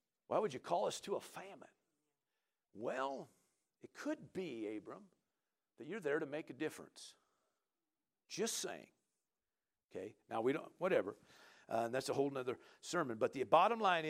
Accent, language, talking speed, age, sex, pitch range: American, English, 160 wpm, 50-69, male, 140-200 Hz